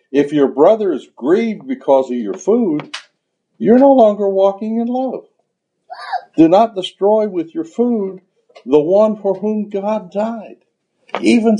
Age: 60-79